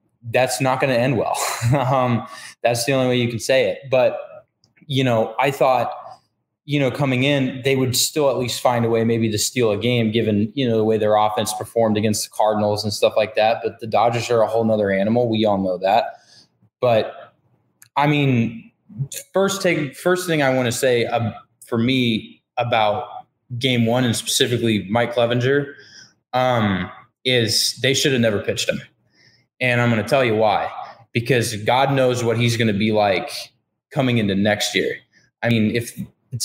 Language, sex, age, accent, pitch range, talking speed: English, male, 20-39, American, 110-130 Hz, 190 wpm